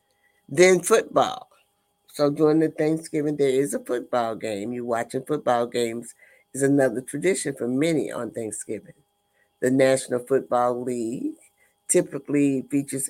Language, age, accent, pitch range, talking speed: English, 60-79, American, 110-140 Hz, 130 wpm